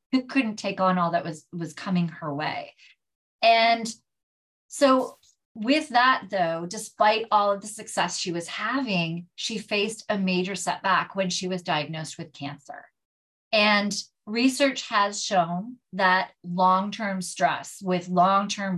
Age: 30-49